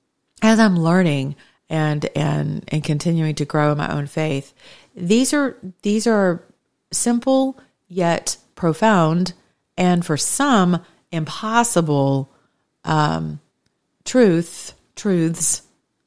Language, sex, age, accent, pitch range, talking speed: English, female, 40-59, American, 145-175 Hz, 100 wpm